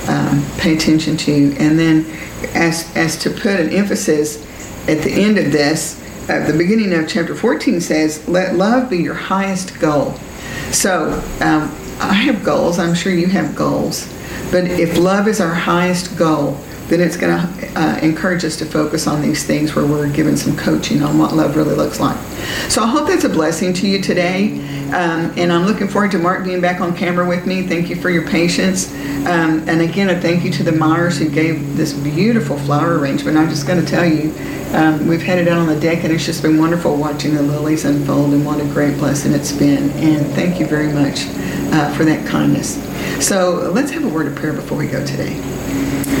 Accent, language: American, English